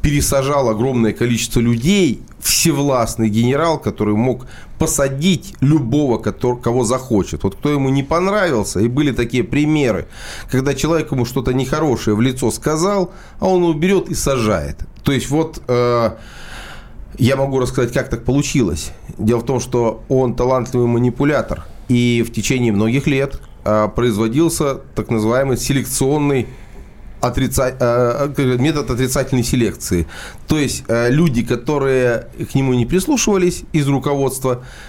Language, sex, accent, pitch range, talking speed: Russian, male, native, 115-140 Hz, 125 wpm